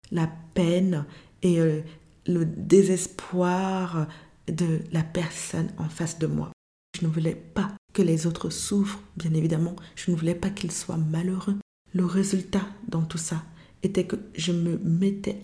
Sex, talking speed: female, 155 wpm